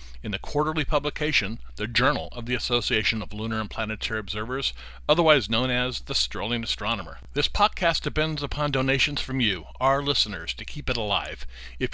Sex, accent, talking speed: male, American, 170 wpm